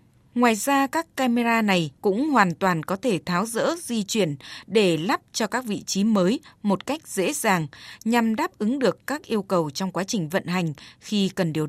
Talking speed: 205 wpm